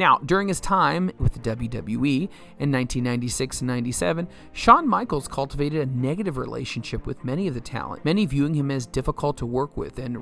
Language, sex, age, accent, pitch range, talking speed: English, male, 40-59, American, 125-165 Hz, 180 wpm